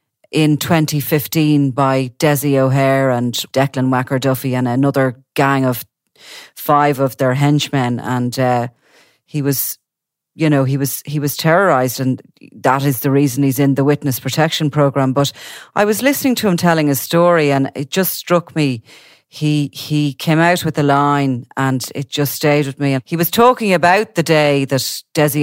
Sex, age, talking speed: female, 40-59, 170 wpm